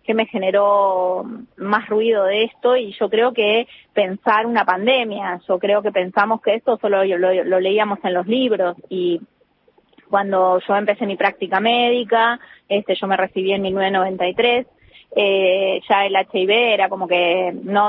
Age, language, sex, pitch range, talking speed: 20-39, Spanish, female, 185-220 Hz, 160 wpm